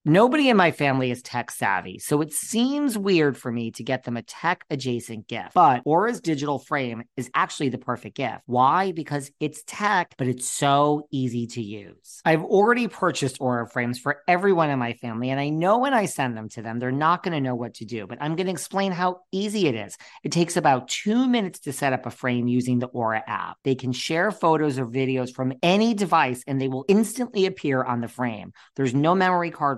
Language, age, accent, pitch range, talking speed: English, 40-59, American, 125-165 Hz, 220 wpm